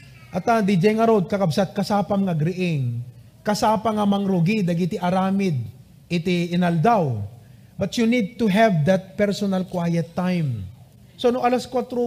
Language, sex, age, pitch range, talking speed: English, male, 30-49, 145-215 Hz, 135 wpm